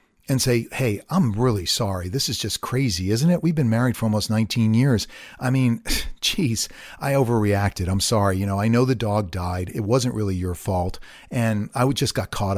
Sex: male